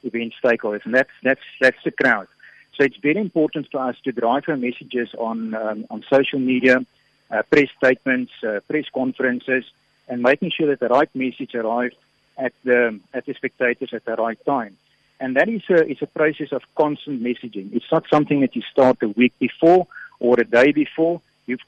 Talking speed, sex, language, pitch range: 195 wpm, male, English, 120-155 Hz